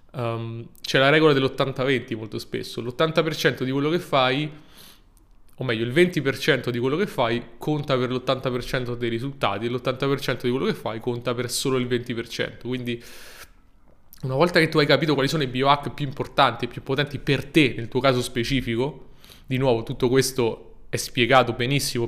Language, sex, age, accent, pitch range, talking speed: Italian, male, 20-39, native, 120-150 Hz, 175 wpm